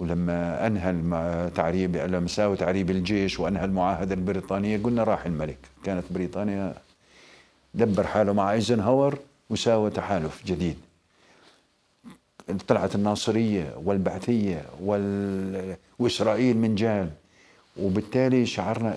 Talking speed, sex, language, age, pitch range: 100 wpm, male, Arabic, 50-69, 95-130 Hz